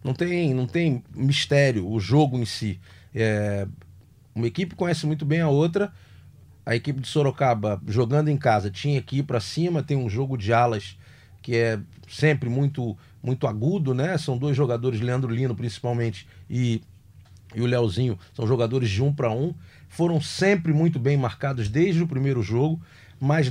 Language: Portuguese